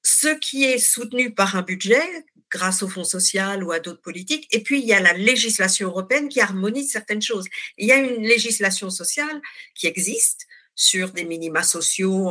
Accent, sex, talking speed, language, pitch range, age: French, female, 190 wpm, French, 175-245 Hz, 50-69